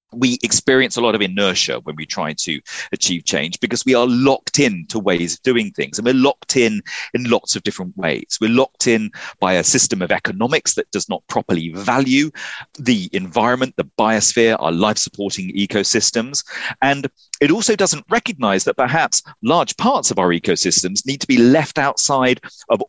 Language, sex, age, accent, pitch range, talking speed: English, male, 40-59, British, 105-150 Hz, 180 wpm